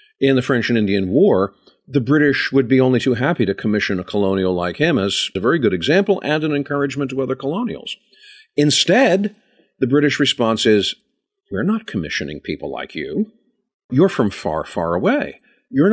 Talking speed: 175 wpm